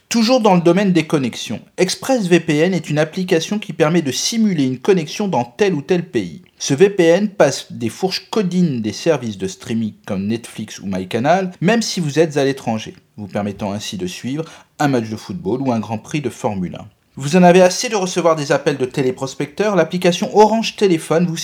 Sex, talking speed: male, 200 wpm